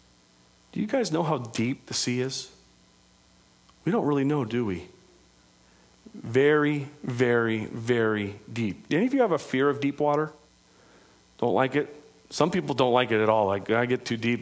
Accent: American